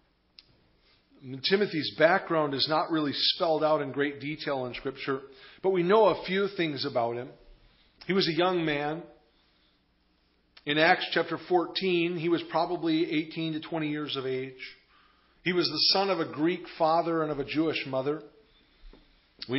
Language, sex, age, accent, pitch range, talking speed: English, male, 40-59, American, 135-165 Hz, 160 wpm